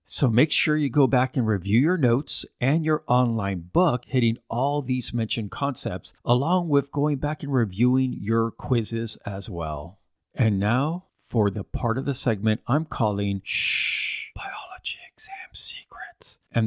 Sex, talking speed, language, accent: male, 160 wpm, English, American